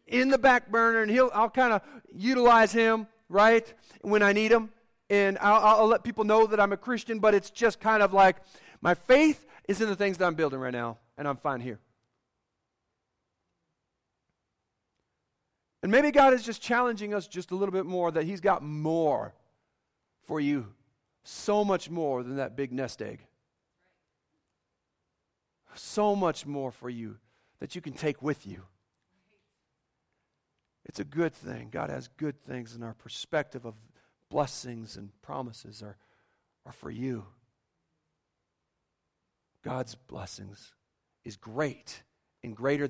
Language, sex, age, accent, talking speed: English, male, 40-59, American, 150 wpm